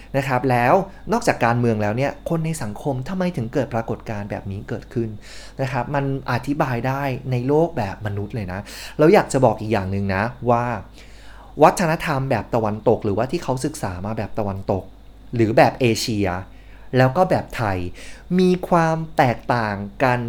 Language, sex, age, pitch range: Thai, male, 20-39, 105-150 Hz